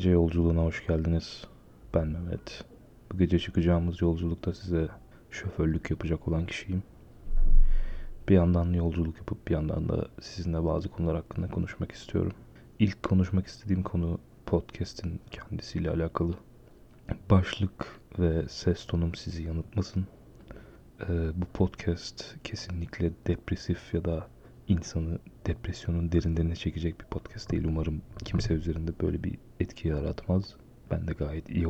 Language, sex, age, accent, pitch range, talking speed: Turkish, male, 30-49, native, 80-95 Hz, 120 wpm